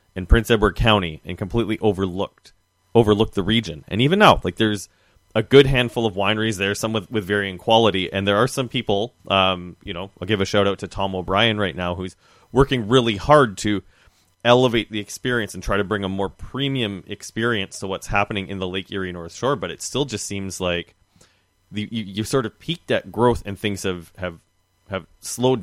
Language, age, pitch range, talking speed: English, 30-49, 95-115 Hz, 210 wpm